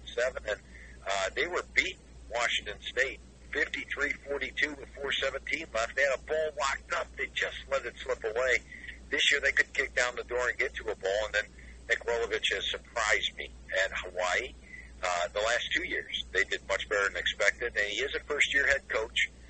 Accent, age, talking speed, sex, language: American, 60-79, 200 wpm, male, English